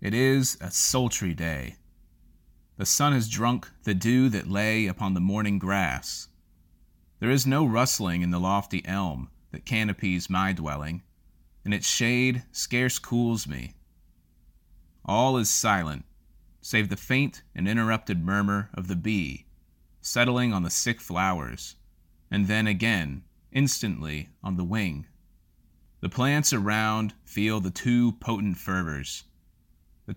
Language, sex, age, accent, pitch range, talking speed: English, male, 30-49, American, 80-110 Hz, 135 wpm